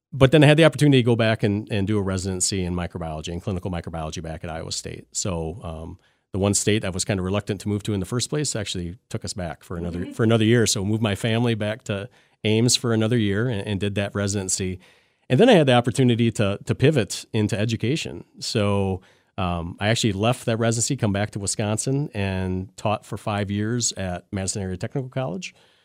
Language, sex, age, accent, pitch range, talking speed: English, male, 40-59, American, 90-115 Hz, 225 wpm